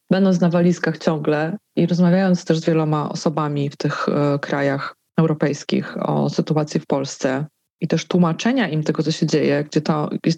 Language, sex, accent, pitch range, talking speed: Polish, female, native, 160-185 Hz, 175 wpm